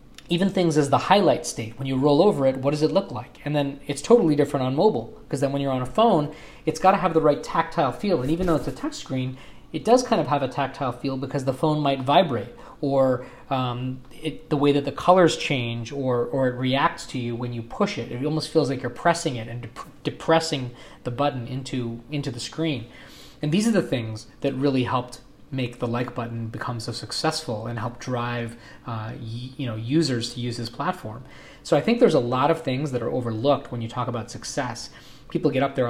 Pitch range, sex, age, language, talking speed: 120-155 Hz, male, 20-39, English, 230 wpm